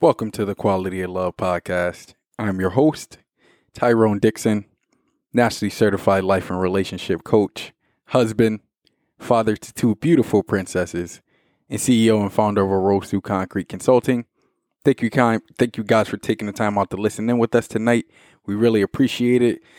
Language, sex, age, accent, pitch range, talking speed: English, male, 20-39, American, 95-120 Hz, 165 wpm